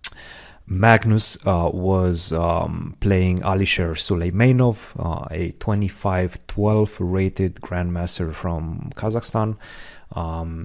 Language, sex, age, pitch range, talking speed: English, male, 30-49, 90-110 Hz, 85 wpm